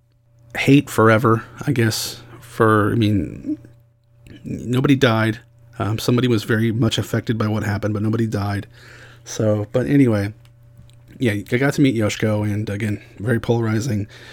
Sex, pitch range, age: male, 105-120 Hz, 30-49